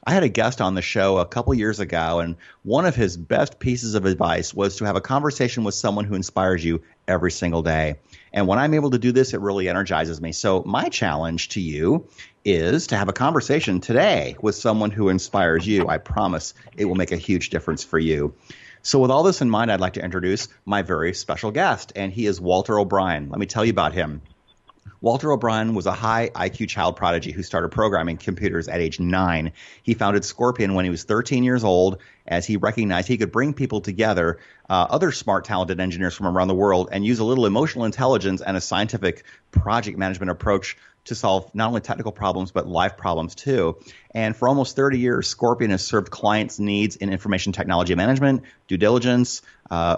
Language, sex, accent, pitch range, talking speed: English, male, American, 90-115 Hz, 210 wpm